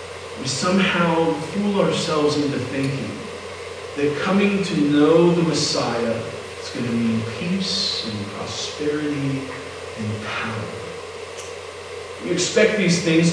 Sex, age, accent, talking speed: male, 40-59, American, 115 wpm